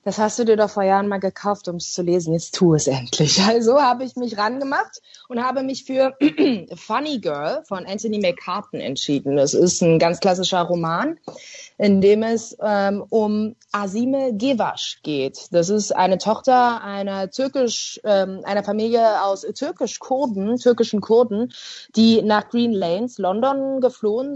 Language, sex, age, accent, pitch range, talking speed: German, female, 20-39, German, 195-230 Hz, 160 wpm